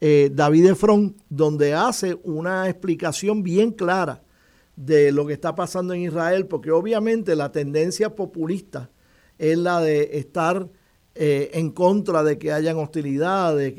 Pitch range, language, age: 145-180 Hz, Spanish, 50-69